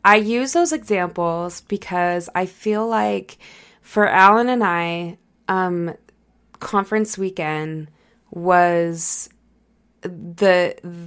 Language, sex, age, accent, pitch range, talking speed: English, female, 20-39, American, 180-215 Hz, 90 wpm